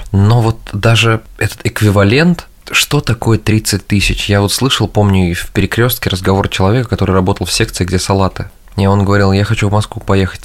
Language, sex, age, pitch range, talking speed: Russian, male, 20-39, 95-120 Hz, 185 wpm